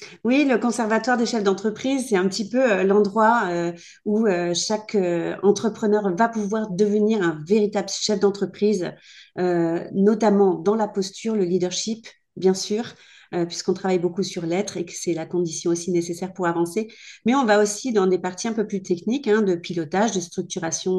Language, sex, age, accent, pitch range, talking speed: French, female, 40-59, French, 170-205 Hz, 170 wpm